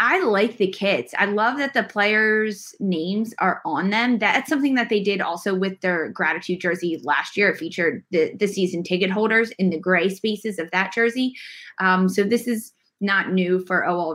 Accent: American